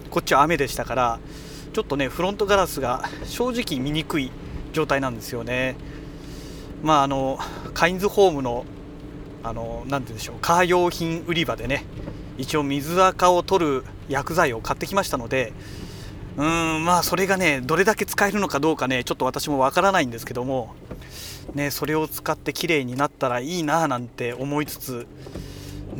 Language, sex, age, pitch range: Japanese, male, 30-49, 125-170 Hz